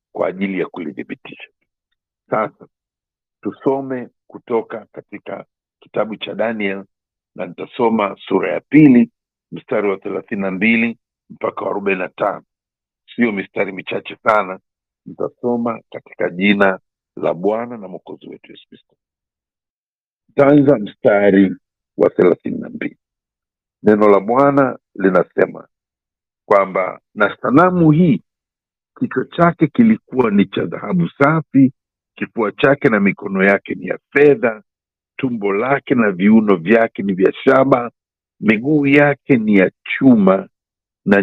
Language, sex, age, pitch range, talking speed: Swahili, male, 50-69, 100-155 Hz, 110 wpm